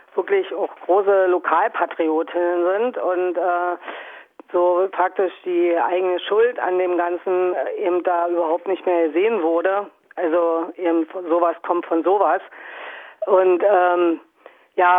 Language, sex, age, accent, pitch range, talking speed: German, female, 40-59, German, 170-185 Hz, 130 wpm